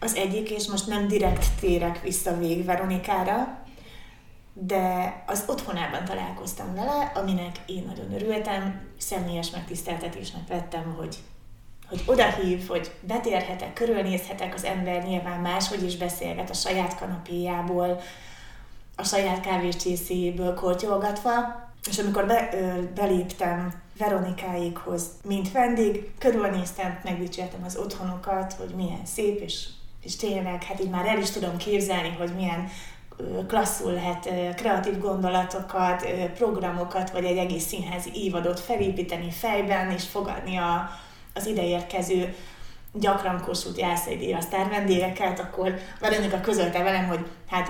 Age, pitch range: 30-49, 175-200 Hz